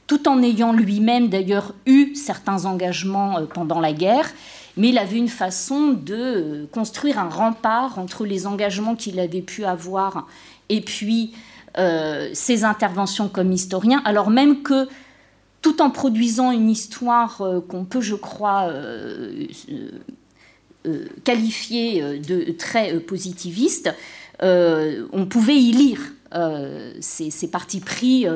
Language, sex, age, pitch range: French, female, 50-69, 185-245 Hz